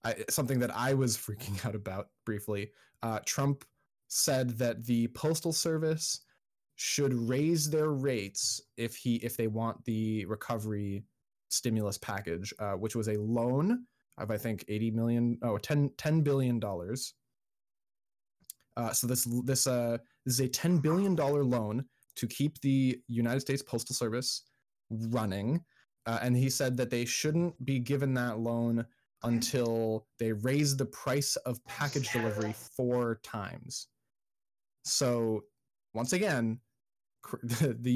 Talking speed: 140 wpm